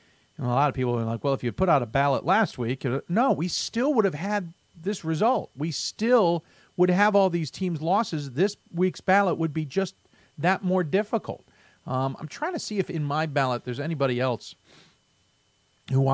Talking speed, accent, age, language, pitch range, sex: 200 wpm, American, 50-69, English, 125-180 Hz, male